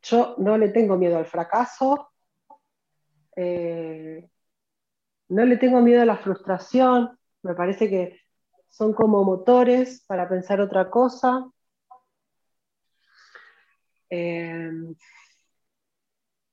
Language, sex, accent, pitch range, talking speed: Spanish, female, Argentinian, 185-235 Hz, 95 wpm